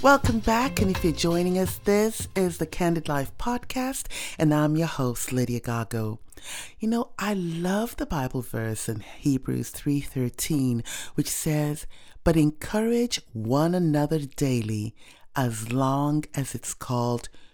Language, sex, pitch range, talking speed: English, female, 125-170 Hz, 140 wpm